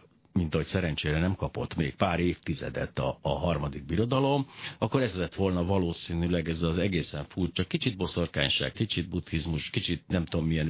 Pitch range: 85-110 Hz